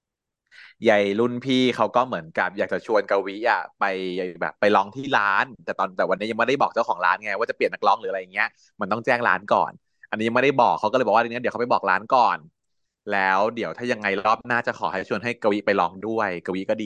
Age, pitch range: 20-39, 105-140 Hz